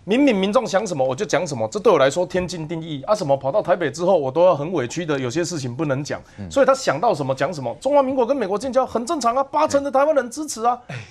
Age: 30-49